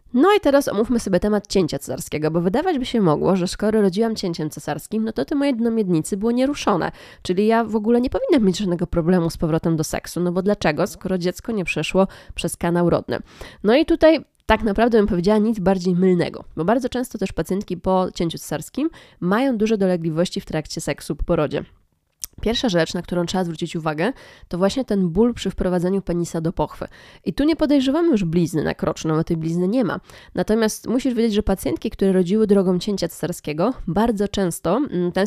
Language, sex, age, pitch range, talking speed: Polish, female, 20-39, 170-220 Hz, 195 wpm